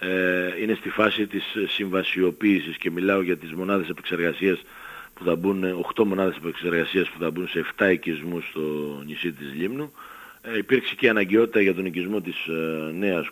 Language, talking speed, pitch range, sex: Greek, 160 wpm, 85-110 Hz, male